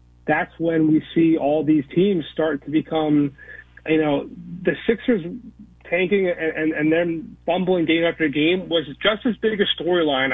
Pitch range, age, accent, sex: 145-170 Hz, 30-49, American, male